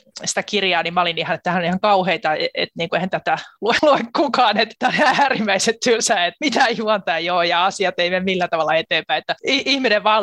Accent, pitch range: native, 175-230 Hz